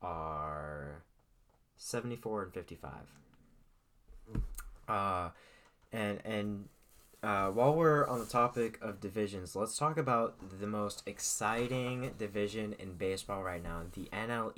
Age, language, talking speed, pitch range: 20-39, English, 115 wpm, 85-115 Hz